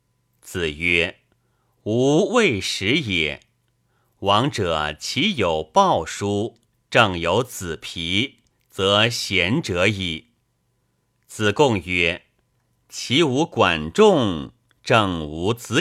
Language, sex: Chinese, male